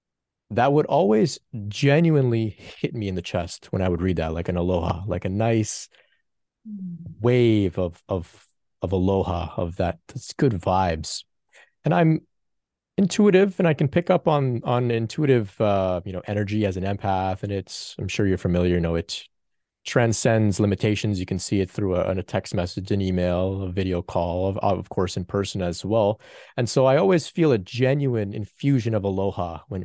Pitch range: 95-125 Hz